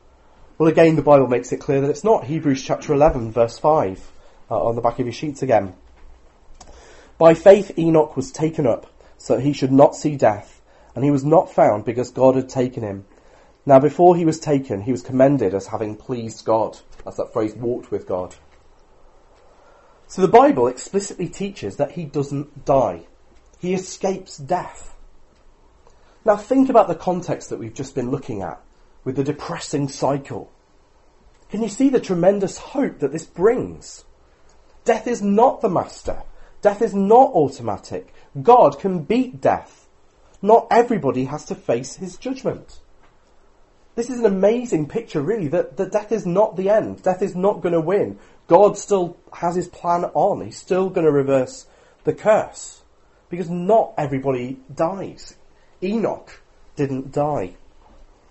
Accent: British